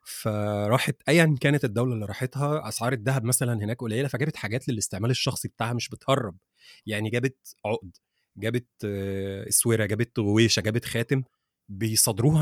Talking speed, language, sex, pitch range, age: 140 wpm, Arabic, male, 115-140 Hz, 30-49